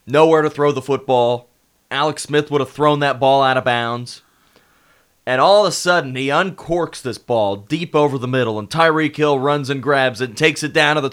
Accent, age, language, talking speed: American, 30-49, English, 220 wpm